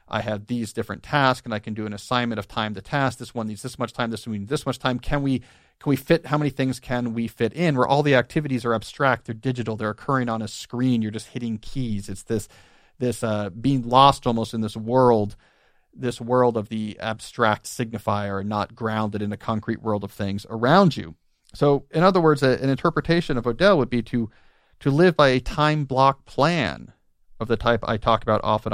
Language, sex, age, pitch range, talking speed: English, male, 40-59, 110-135 Hz, 225 wpm